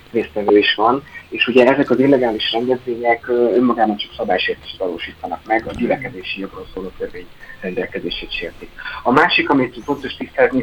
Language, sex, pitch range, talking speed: Hungarian, male, 105-140 Hz, 145 wpm